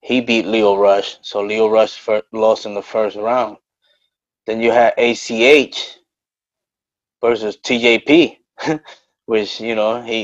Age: 20-39